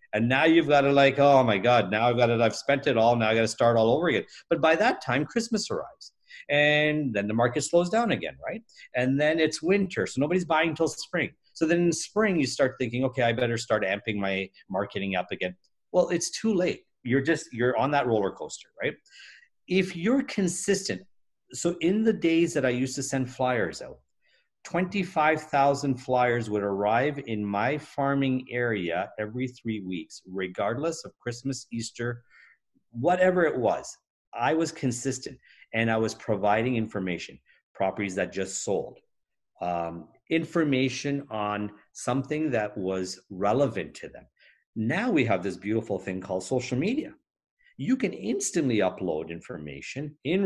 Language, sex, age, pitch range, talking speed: English, male, 50-69, 110-165 Hz, 170 wpm